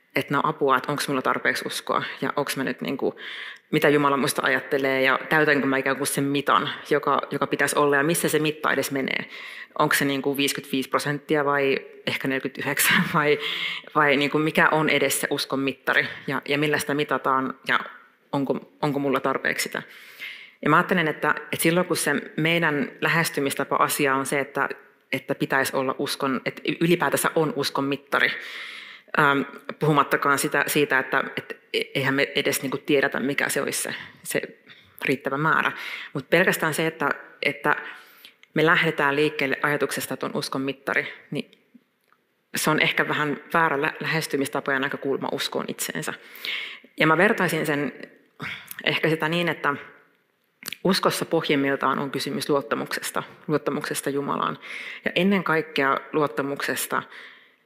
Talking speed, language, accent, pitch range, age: 145 wpm, Finnish, native, 140-160 Hz, 30-49